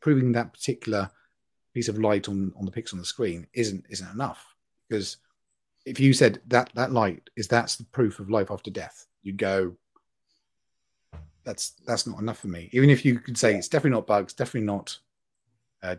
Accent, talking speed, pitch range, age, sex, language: British, 190 wpm, 100-120 Hz, 30-49, male, English